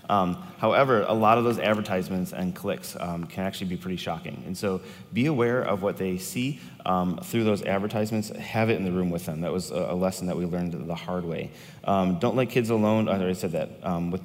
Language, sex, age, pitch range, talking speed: English, male, 30-49, 95-125 Hz, 235 wpm